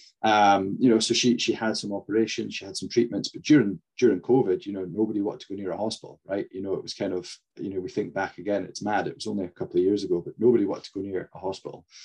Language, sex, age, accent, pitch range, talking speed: English, male, 30-49, British, 95-120 Hz, 285 wpm